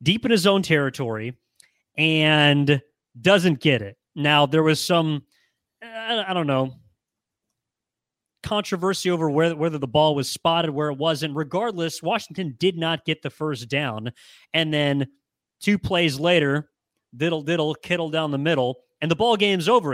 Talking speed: 150 wpm